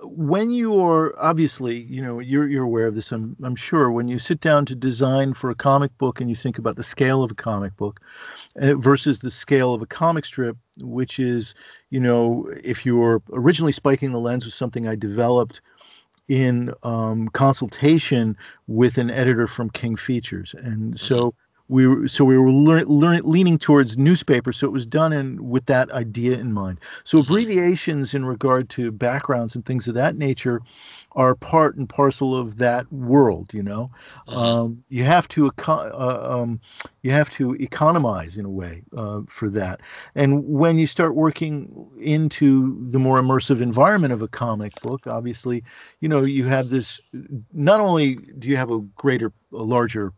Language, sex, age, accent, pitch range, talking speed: English, male, 50-69, American, 120-140 Hz, 180 wpm